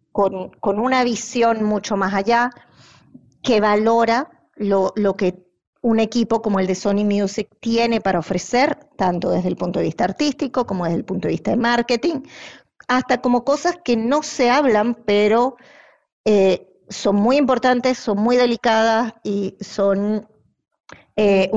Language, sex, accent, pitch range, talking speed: Spanish, female, American, 200-235 Hz, 155 wpm